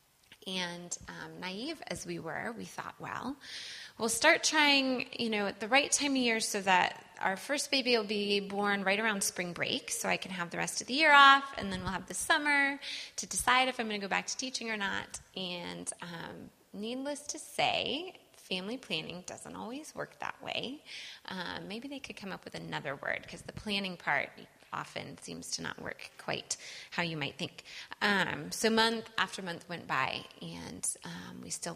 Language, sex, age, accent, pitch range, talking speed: English, female, 20-39, American, 175-245 Hz, 200 wpm